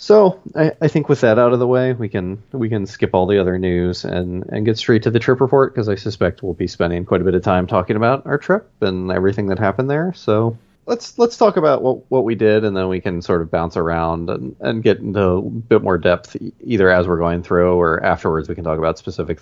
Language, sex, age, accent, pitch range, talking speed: English, male, 30-49, American, 90-120 Hz, 260 wpm